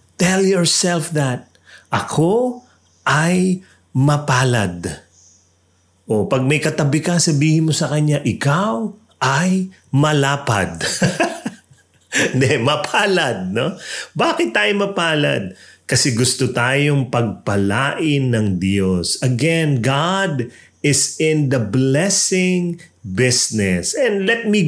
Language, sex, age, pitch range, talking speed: English, male, 30-49, 120-185 Hz, 95 wpm